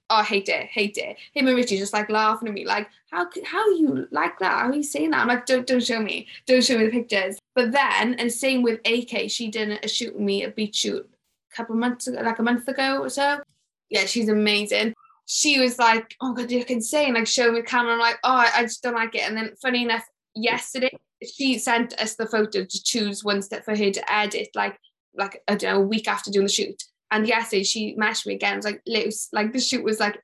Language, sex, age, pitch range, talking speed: English, female, 10-29, 215-250 Hz, 260 wpm